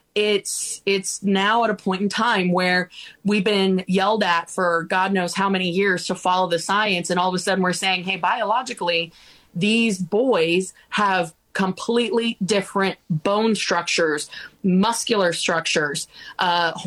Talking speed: 150 wpm